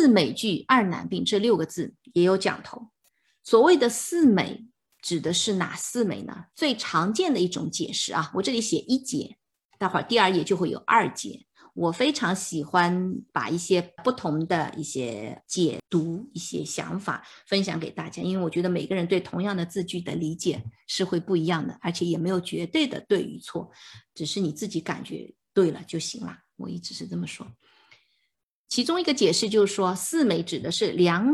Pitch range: 170-235 Hz